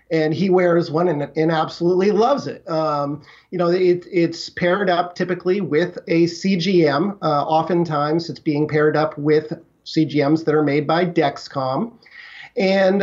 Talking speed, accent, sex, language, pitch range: 155 wpm, American, male, English, 170-195 Hz